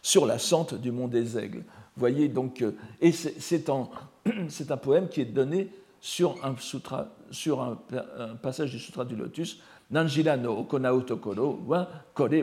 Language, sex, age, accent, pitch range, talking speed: French, male, 60-79, French, 120-160 Hz, 180 wpm